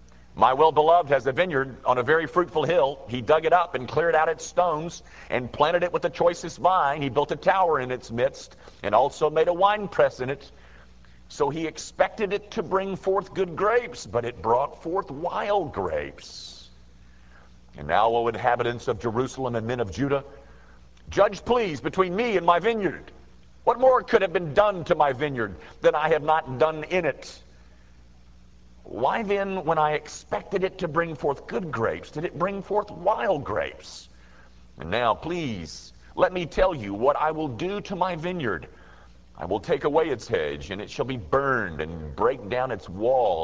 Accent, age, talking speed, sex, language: American, 50-69, 190 wpm, male, English